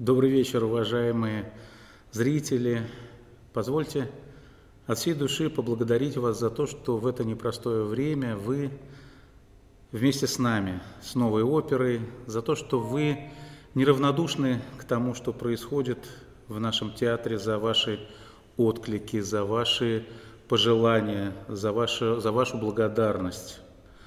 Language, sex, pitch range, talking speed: Russian, male, 115-135 Hz, 115 wpm